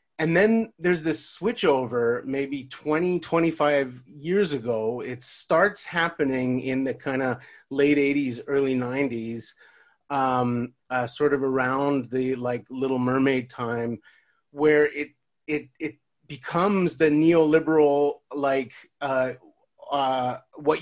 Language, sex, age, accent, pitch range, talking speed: English, male, 30-49, American, 130-150 Hz, 120 wpm